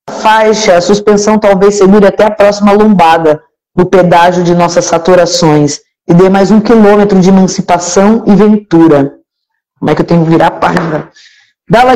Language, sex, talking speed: Portuguese, female, 165 wpm